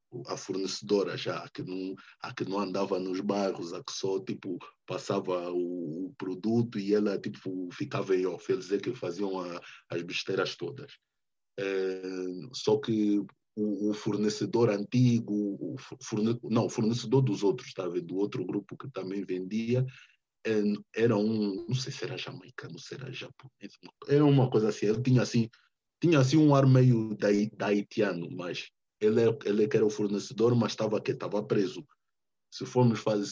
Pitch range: 95-125 Hz